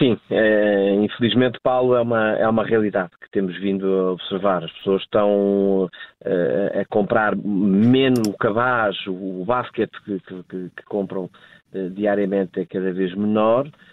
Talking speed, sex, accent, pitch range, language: 135 wpm, male, Portuguese, 95-110 Hz, Portuguese